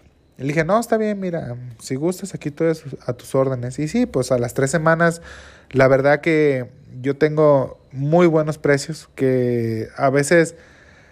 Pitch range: 125-160 Hz